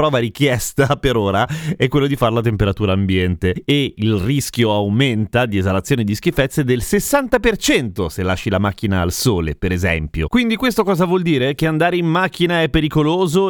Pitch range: 110-160 Hz